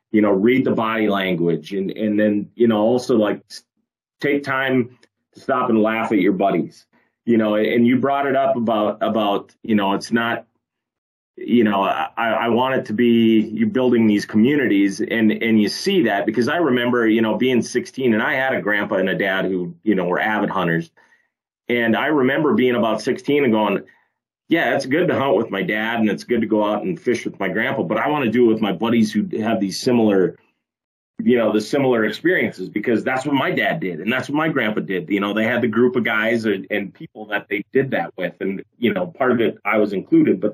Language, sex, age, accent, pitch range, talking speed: English, male, 30-49, American, 105-125 Hz, 230 wpm